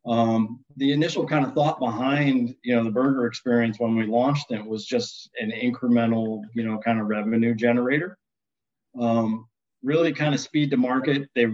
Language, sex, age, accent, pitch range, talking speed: English, male, 40-59, American, 115-140 Hz, 175 wpm